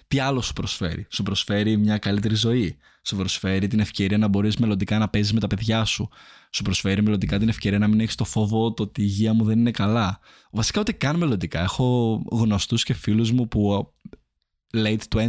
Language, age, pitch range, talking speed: Greek, 20-39, 100-115 Hz, 195 wpm